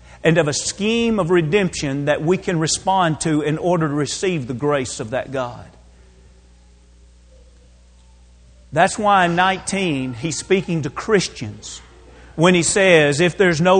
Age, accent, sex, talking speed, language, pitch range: 40-59, American, male, 150 wpm, English, 165-270 Hz